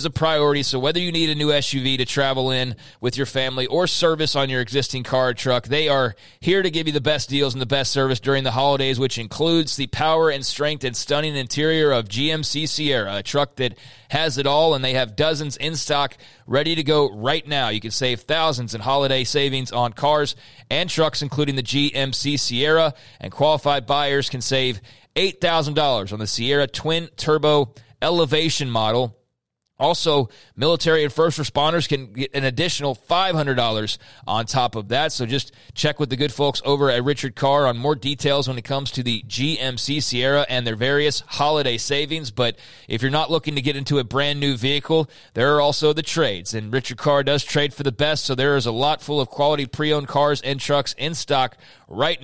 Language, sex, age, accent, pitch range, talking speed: English, male, 30-49, American, 125-150 Hz, 200 wpm